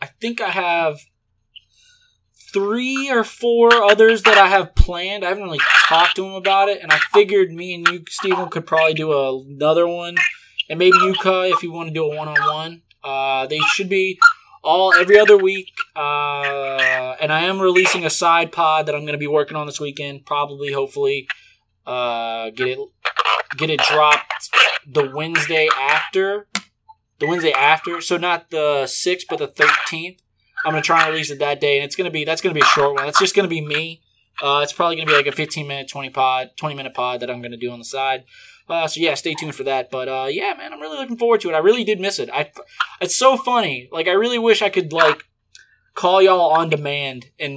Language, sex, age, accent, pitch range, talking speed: English, male, 20-39, American, 145-195 Hz, 215 wpm